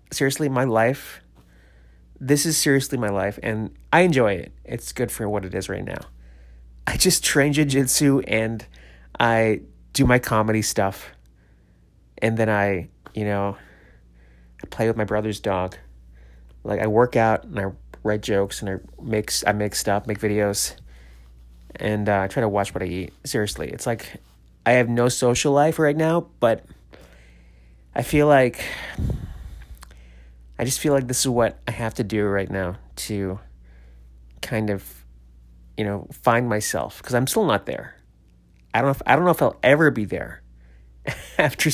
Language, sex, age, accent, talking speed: English, male, 30-49, American, 165 wpm